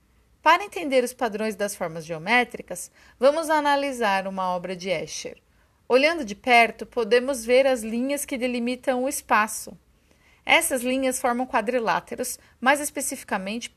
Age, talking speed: 40-59, 130 wpm